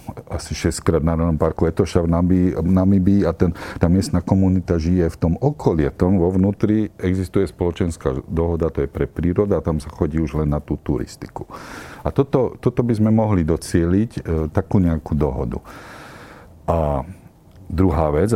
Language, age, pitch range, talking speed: Slovak, 50-69, 80-100 Hz, 165 wpm